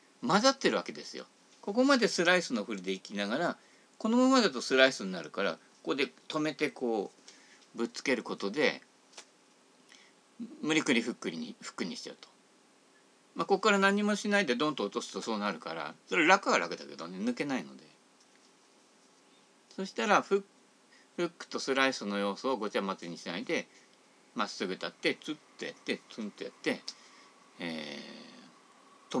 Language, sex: Japanese, male